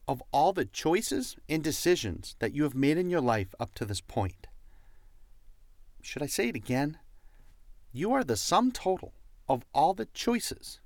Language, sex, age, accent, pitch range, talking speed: English, male, 40-59, American, 110-165 Hz, 170 wpm